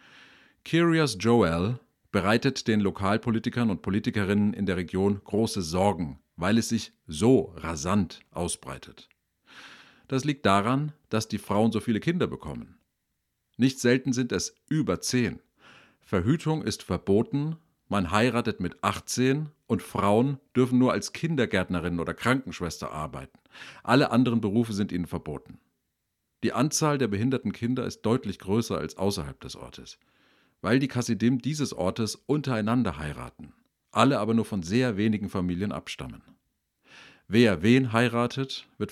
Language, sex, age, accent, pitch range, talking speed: German, male, 40-59, German, 95-125 Hz, 135 wpm